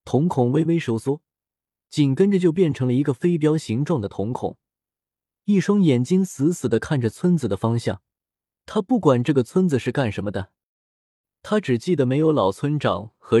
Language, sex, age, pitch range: Chinese, male, 20-39, 115-170 Hz